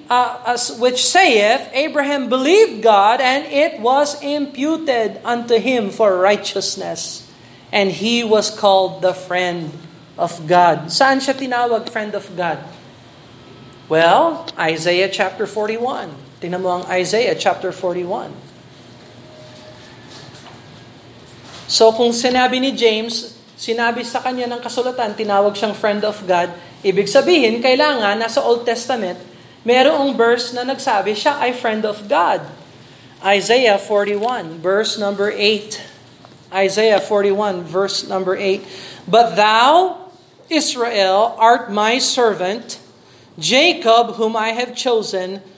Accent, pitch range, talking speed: native, 175-245 Hz, 115 wpm